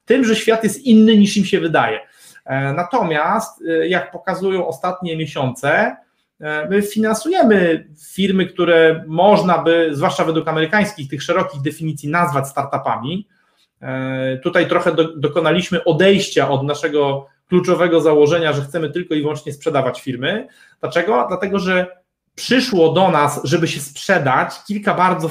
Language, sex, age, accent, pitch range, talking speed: Polish, male, 30-49, native, 155-195 Hz, 130 wpm